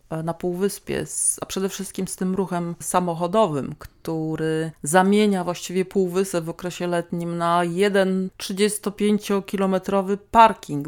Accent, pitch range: native, 165-195 Hz